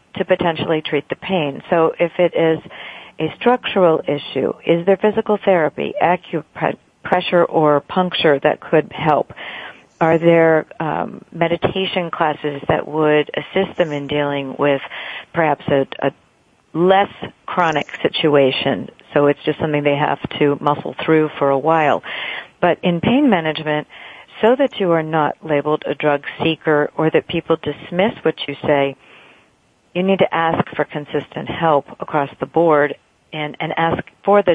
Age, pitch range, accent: 50-69, 145-180 Hz, American